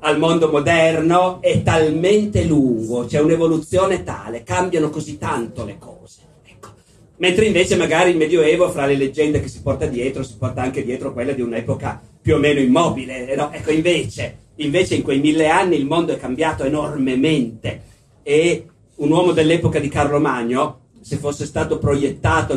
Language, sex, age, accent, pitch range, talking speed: Italian, male, 40-59, native, 120-165 Hz, 170 wpm